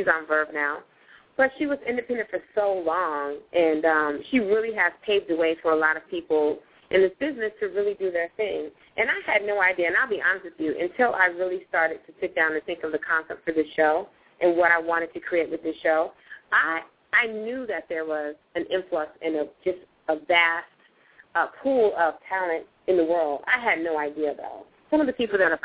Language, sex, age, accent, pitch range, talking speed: English, female, 30-49, American, 160-210 Hz, 230 wpm